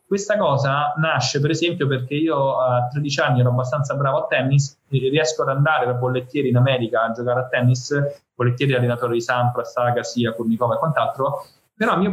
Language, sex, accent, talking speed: Italian, male, native, 185 wpm